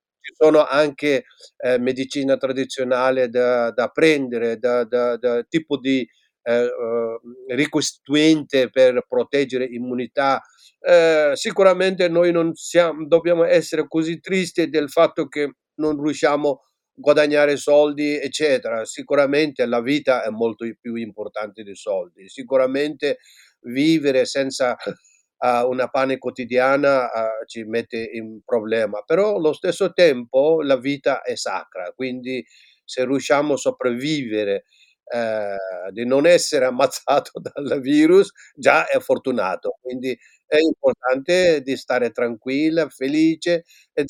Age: 50-69